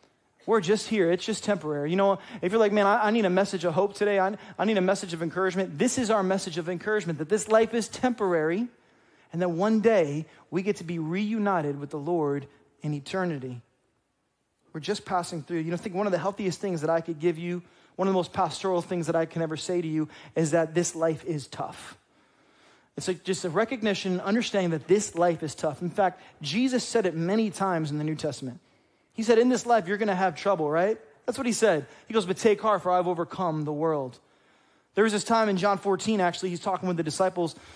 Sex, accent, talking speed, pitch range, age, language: male, American, 235 wpm, 170-210 Hz, 30-49, English